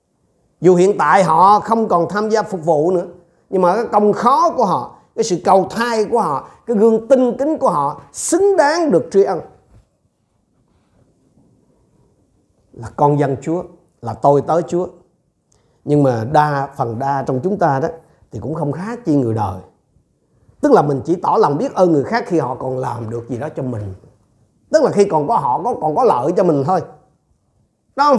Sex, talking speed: male, 195 wpm